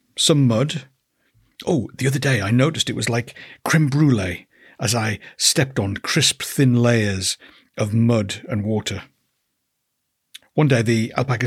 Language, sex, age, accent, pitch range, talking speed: English, male, 60-79, British, 115-150 Hz, 145 wpm